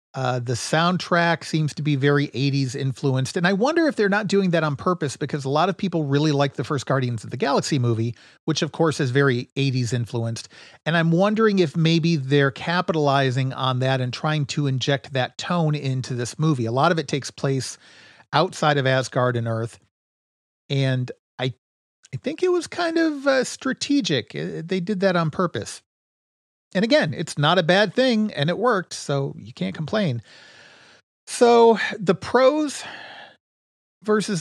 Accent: American